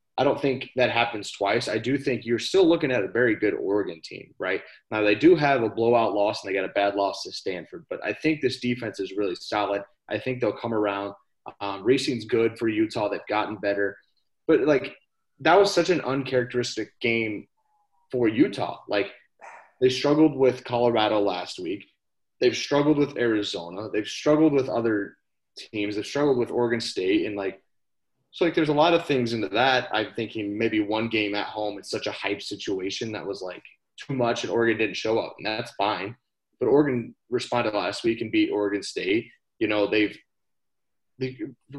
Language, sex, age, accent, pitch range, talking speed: English, male, 30-49, American, 105-140 Hz, 195 wpm